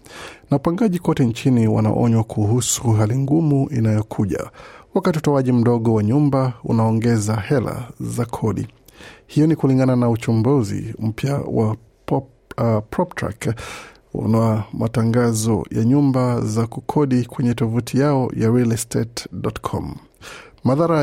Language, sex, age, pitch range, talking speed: Swahili, male, 50-69, 115-135 Hz, 110 wpm